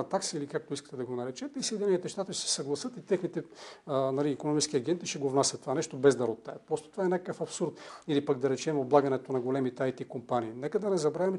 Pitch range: 135-180 Hz